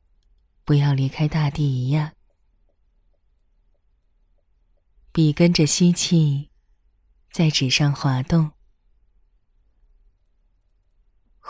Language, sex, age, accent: Chinese, female, 20-39, native